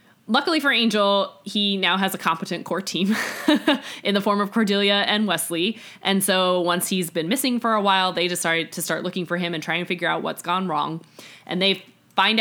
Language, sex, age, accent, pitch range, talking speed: English, female, 20-39, American, 170-200 Hz, 215 wpm